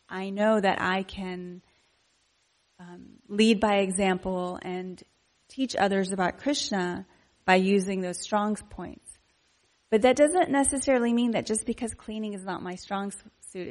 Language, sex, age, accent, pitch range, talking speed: English, female, 30-49, American, 185-215 Hz, 145 wpm